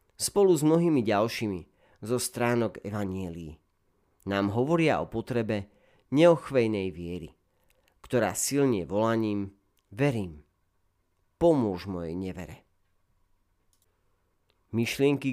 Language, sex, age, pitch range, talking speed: Slovak, male, 40-59, 90-120 Hz, 80 wpm